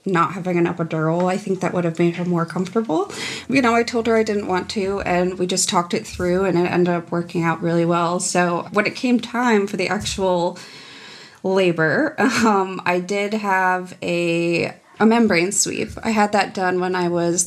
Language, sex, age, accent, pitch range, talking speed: English, female, 20-39, American, 180-210 Hz, 205 wpm